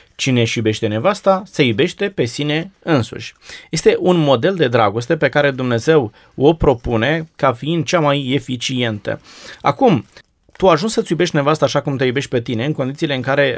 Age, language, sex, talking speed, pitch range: 20-39, Romanian, male, 175 wpm, 120-150 Hz